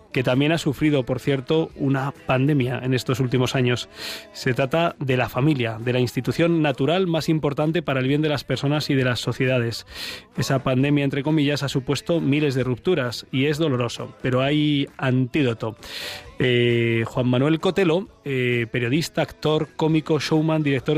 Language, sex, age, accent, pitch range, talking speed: Spanish, male, 20-39, Spanish, 125-150 Hz, 165 wpm